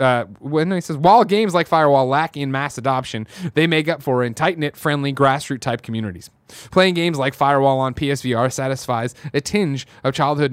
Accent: American